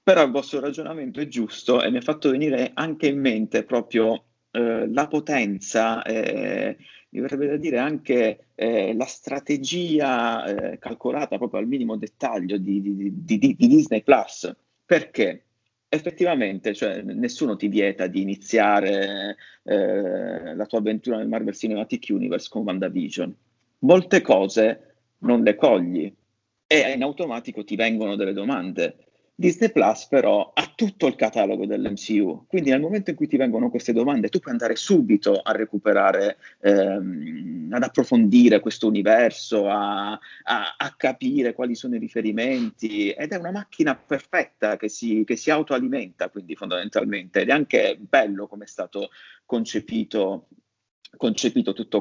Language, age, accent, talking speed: Italian, 30-49, native, 145 wpm